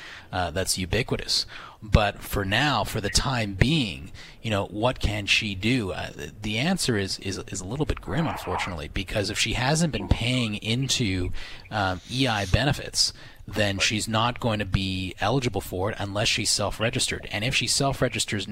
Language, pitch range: English, 95-115 Hz